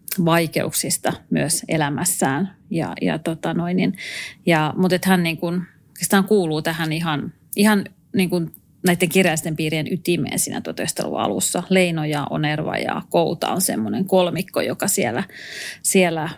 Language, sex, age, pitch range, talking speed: Finnish, female, 30-49, 160-185 Hz, 135 wpm